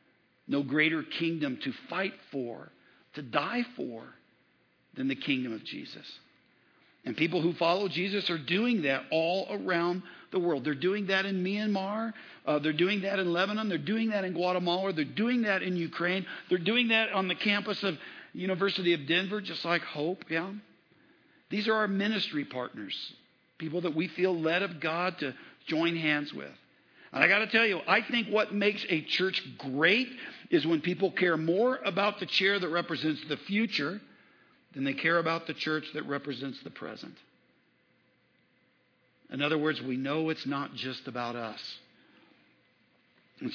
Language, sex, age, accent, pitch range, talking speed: English, male, 50-69, American, 155-205 Hz, 170 wpm